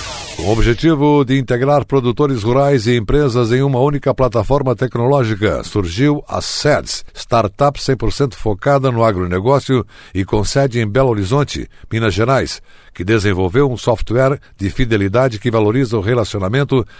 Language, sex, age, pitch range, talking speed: Portuguese, male, 60-79, 105-135 Hz, 140 wpm